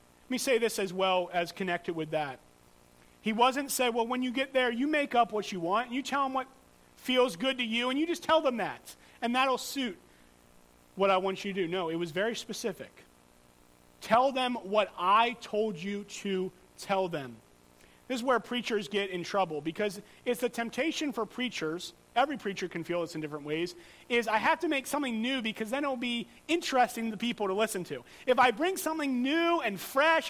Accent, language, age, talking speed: American, English, 40-59, 210 wpm